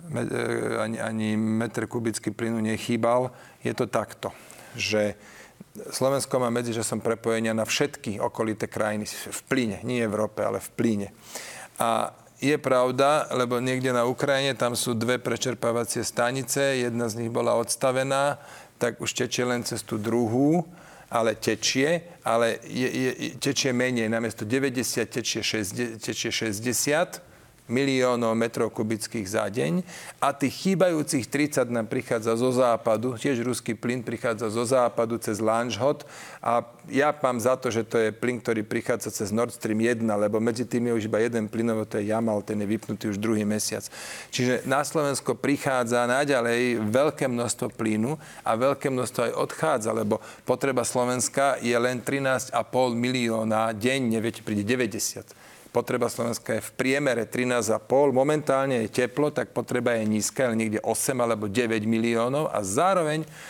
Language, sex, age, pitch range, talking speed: Slovak, male, 40-59, 115-130 Hz, 150 wpm